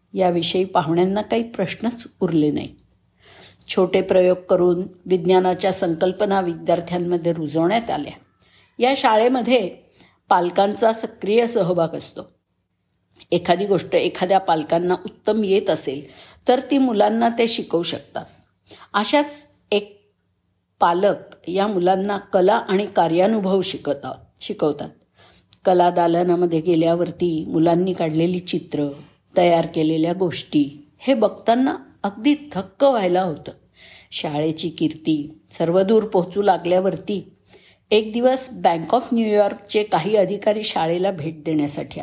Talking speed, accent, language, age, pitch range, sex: 105 wpm, native, Marathi, 50-69, 165-210 Hz, female